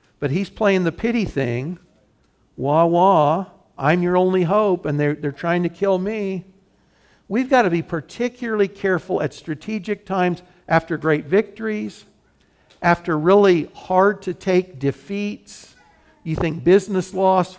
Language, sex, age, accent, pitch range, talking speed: English, male, 60-79, American, 145-195 Hz, 140 wpm